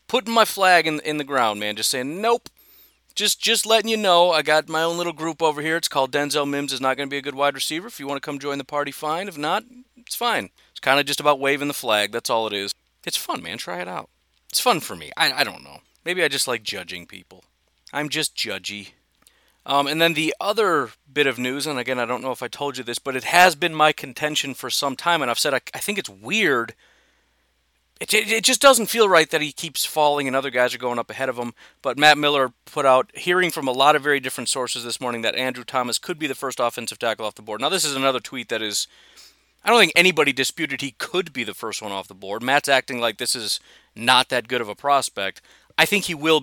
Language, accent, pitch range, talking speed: English, American, 125-155 Hz, 260 wpm